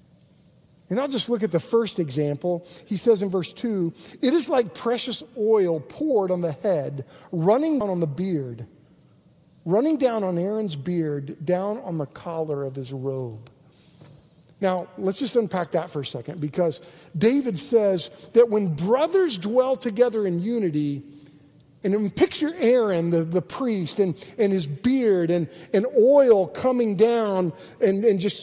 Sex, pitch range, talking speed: male, 160-220 Hz, 160 wpm